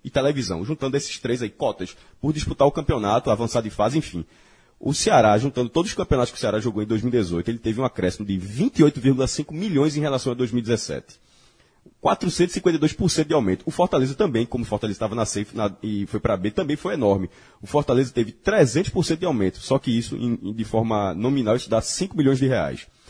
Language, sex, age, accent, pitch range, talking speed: Portuguese, male, 20-39, Brazilian, 110-150 Hz, 190 wpm